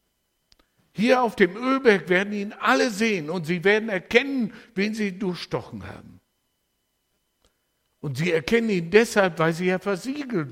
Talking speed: 145 wpm